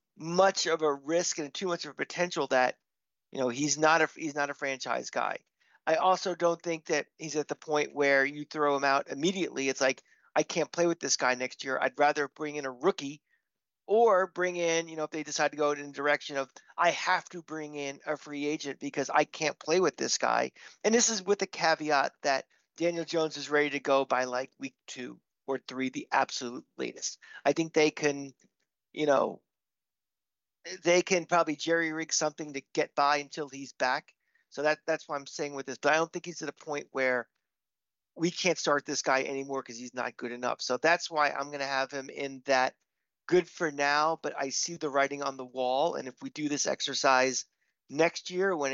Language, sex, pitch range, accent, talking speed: English, male, 135-160 Hz, American, 220 wpm